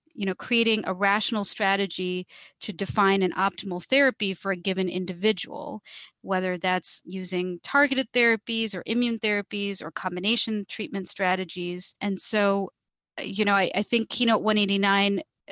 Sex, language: female, English